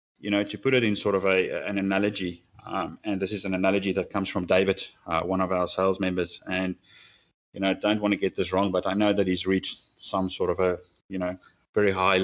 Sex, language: male, English